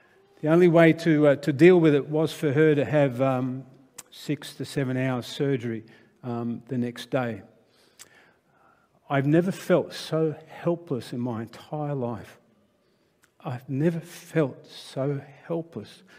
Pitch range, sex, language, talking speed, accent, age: 130-165 Hz, male, English, 140 wpm, Australian, 50-69